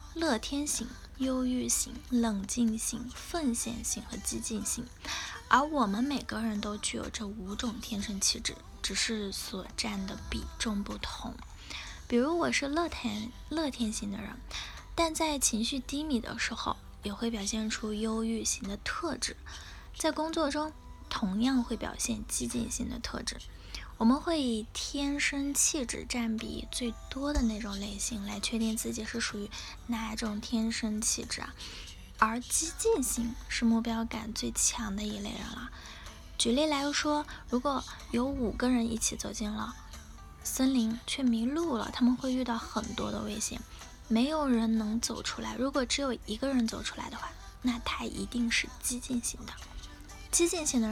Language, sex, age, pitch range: Chinese, female, 10-29, 220-265 Hz